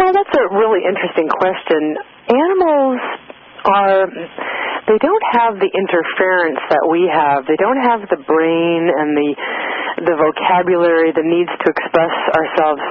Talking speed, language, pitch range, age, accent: 135 wpm, English, 160-215 Hz, 40-59, American